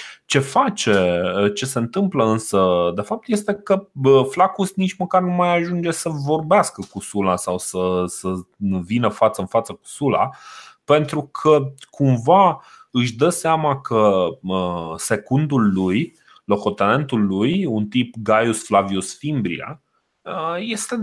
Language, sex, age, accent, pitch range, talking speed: Romanian, male, 30-49, native, 105-175 Hz, 130 wpm